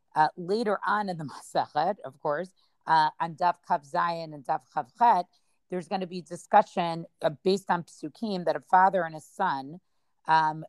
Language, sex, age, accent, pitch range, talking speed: English, female, 40-59, American, 155-185 Hz, 180 wpm